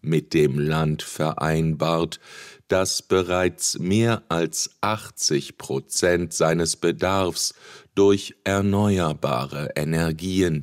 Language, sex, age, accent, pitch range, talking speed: English, male, 50-69, German, 80-100 Hz, 85 wpm